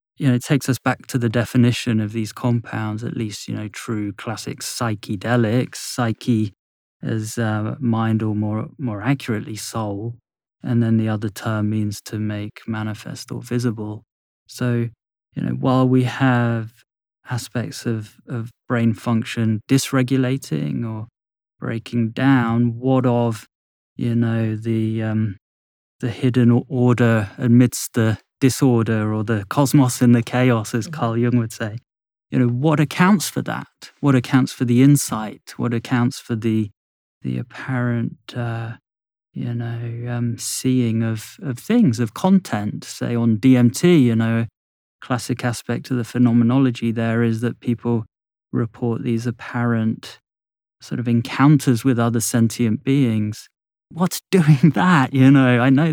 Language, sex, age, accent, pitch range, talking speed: English, male, 20-39, British, 110-130 Hz, 145 wpm